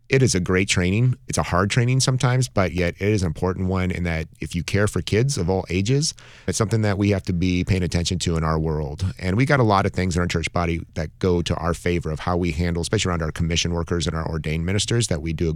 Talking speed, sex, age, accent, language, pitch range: 280 wpm, male, 30-49, American, English, 85-105 Hz